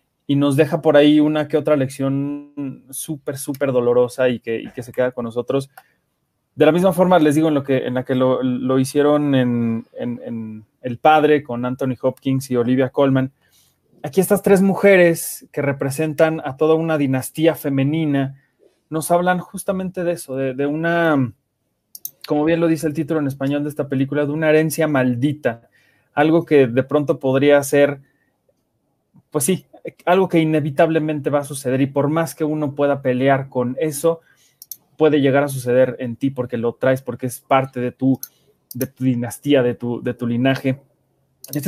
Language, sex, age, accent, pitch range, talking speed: Spanish, male, 30-49, Mexican, 130-155 Hz, 180 wpm